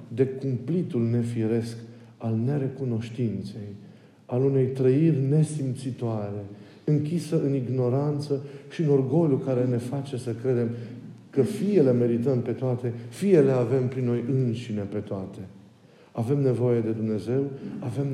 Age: 50-69